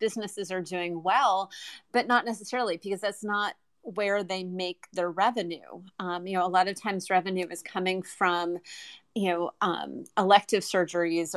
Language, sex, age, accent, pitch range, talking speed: English, female, 30-49, American, 180-205 Hz, 165 wpm